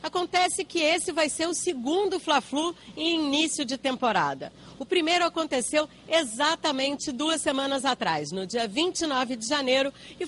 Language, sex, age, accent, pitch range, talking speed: Portuguese, female, 40-59, Brazilian, 220-295 Hz, 145 wpm